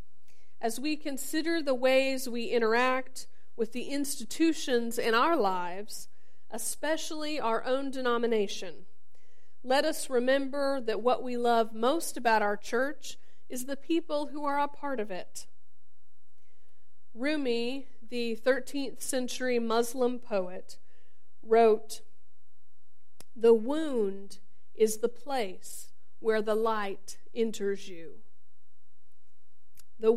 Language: English